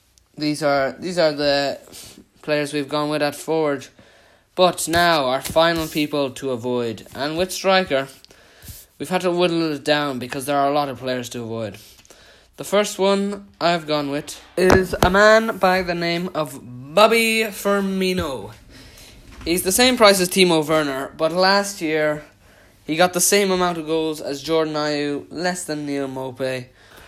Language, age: English, 20-39